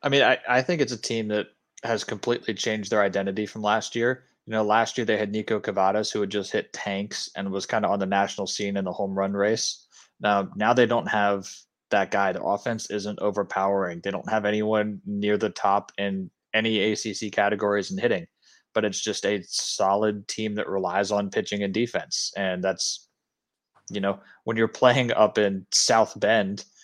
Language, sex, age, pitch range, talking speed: English, male, 20-39, 100-110 Hz, 200 wpm